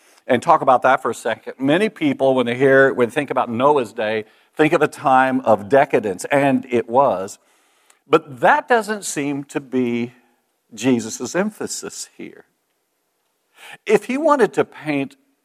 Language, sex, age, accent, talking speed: English, male, 50-69, American, 155 wpm